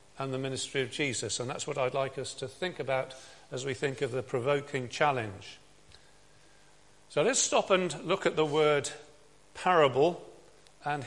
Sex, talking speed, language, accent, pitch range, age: male, 170 wpm, English, British, 135-170 Hz, 50-69